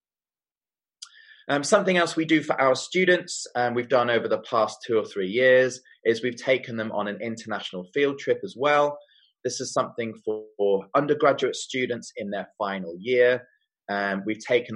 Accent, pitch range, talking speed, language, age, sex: British, 115-175 Hz, 175 wpm, Russian, 20-39, male